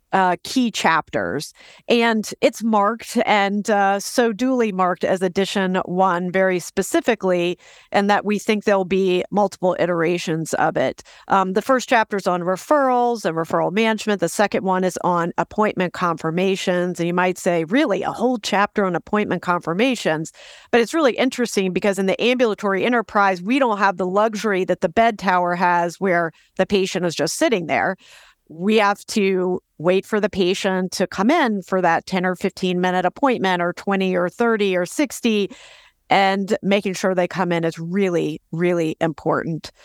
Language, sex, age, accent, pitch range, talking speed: English, female, 40-59, American, 180-210 Hz, 170 wpm